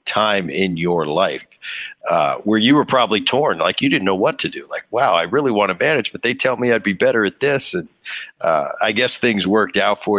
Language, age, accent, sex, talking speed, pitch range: English, 50-69, American, male, 240 wpm, 85-105 Hz